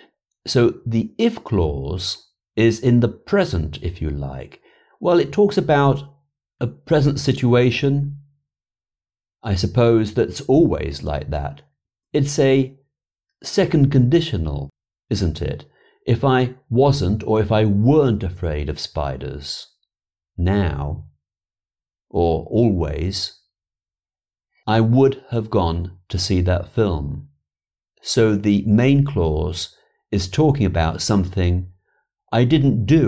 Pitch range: 85-135 Hz